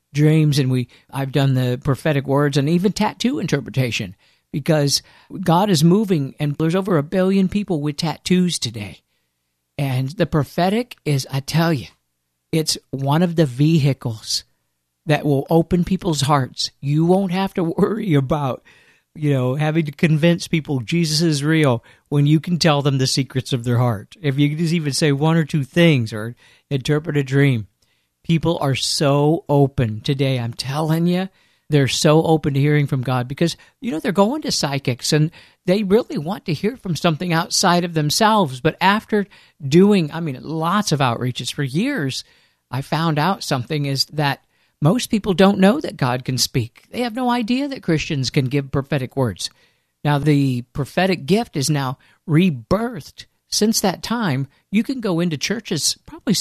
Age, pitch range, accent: 50-69, 135-175 Hz, American